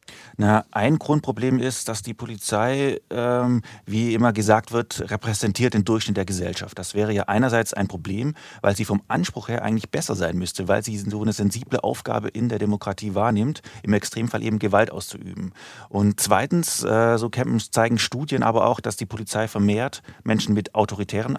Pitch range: 105-120 Hz